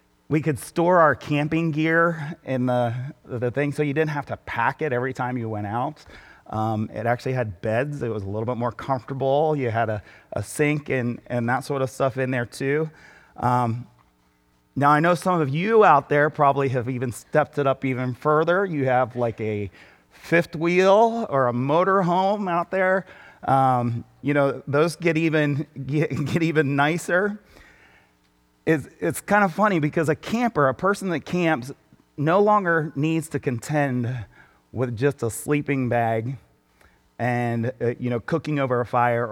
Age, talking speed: 30-49, 175 wpm